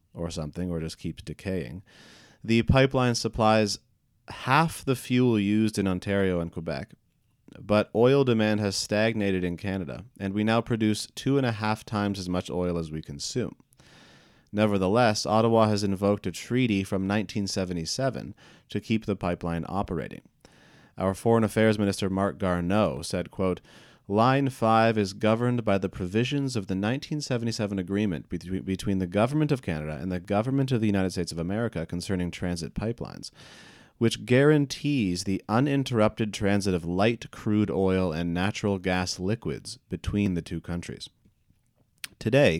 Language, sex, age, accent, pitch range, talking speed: English, male, 30-49, American, 90-115 Hz, 150 wpm